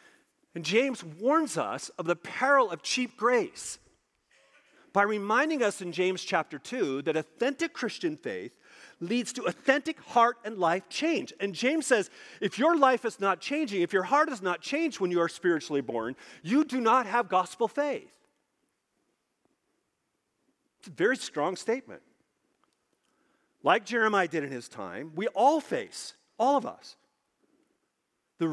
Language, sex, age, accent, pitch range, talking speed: English, male, 40-59, American, 180-280 Hz, 150 wpm